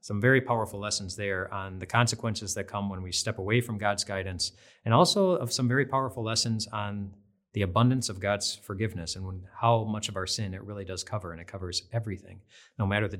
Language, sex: English, male